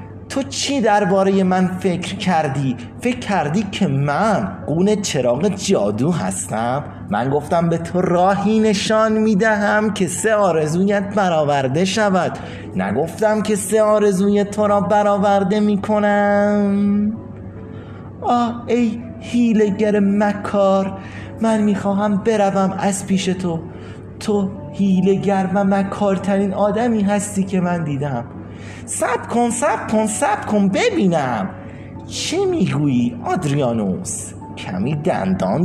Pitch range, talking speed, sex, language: 125-205 Hz, 110 wpm, male, Persian